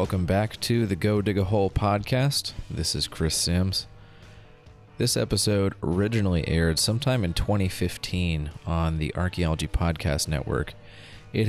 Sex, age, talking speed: male, 30-49, 135 wpm